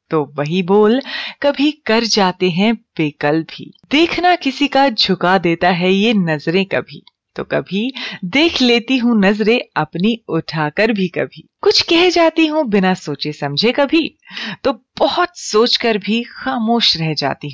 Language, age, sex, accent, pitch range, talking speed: Hindi, 30-49, female, native, 165-265 Hz, 145 wpm